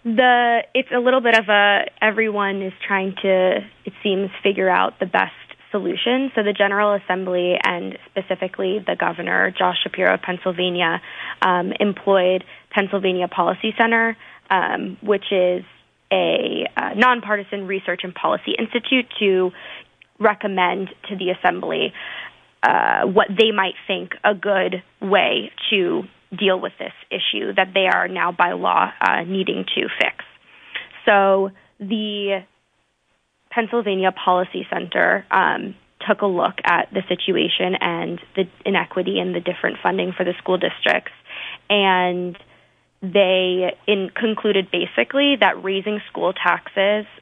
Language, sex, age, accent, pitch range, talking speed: English, female, 20-39, American, 185-215 Hz, 130 wpm